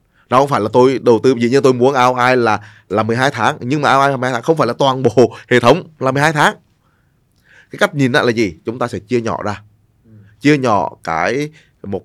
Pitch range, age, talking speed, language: 105-125 Hz, 20-39, 230 wpm, Vietnamese